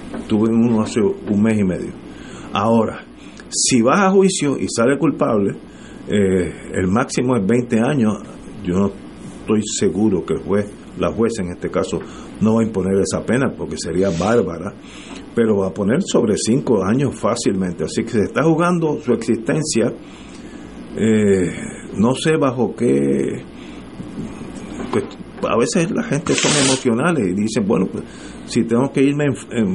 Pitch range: 100-145 Hz